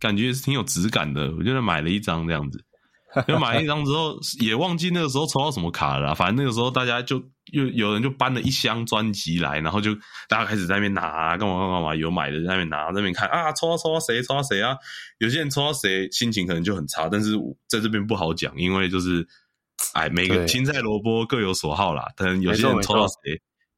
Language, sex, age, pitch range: Chinese, male, 20-39, 90-130 Hz